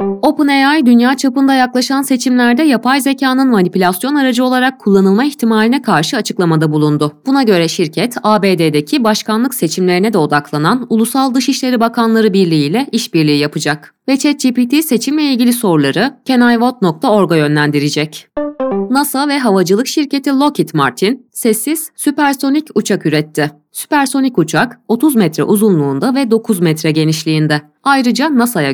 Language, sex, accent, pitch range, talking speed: Turkish, female, native, 165-270 Hz, 125 wpm